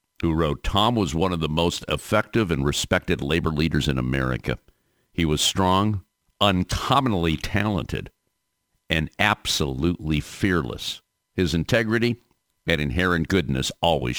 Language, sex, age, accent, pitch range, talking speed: English, male, 50-69, American, 70-95 Hz, 125 wpm